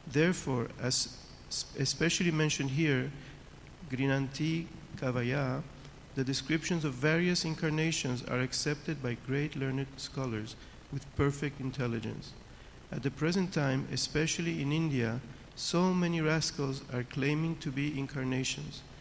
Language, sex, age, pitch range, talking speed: Italian, male, 50-69, 125-150 Hz, 115 wpm